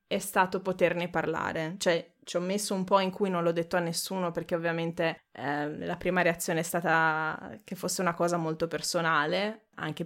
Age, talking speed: 20-39, 190 wpm